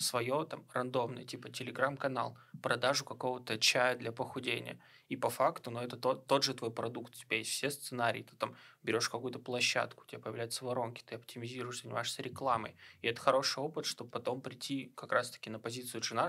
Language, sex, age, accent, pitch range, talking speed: Russian, male, 20-39, native, 120-140 Hz, 190 wpm